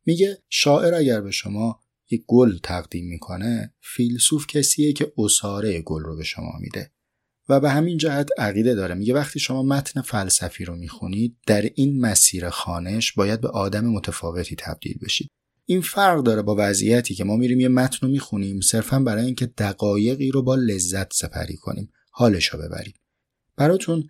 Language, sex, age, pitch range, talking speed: Persian, male, 30-49, 95-125 Hz, 160 wpm